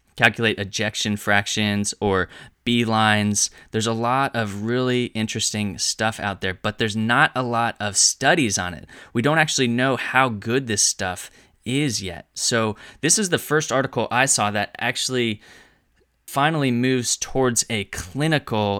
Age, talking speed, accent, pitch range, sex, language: 20-39, 155 wpm, American, 100-125 Hz, male, English